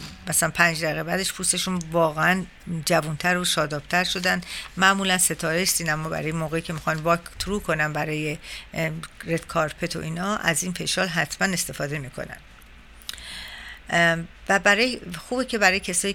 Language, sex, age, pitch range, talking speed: Persian, female, 50-69, 155-185 Hz, 140 wpm